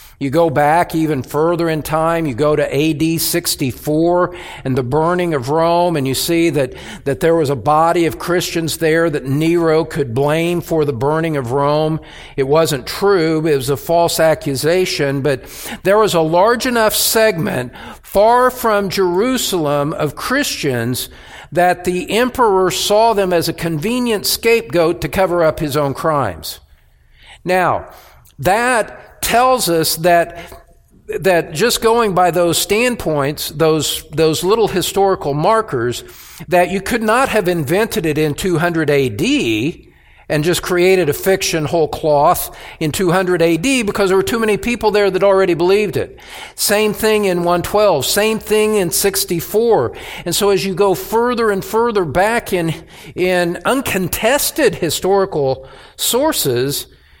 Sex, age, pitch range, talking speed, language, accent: male, 50-69, 155-200 Hz, 150 wpm, English, American